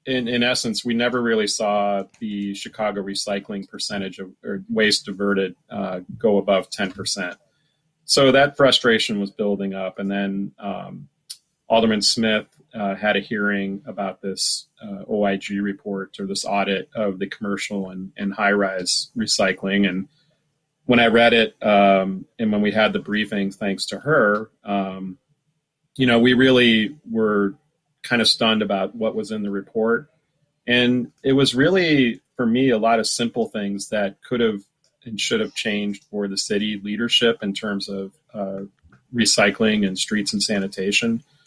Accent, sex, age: American, male, 30-49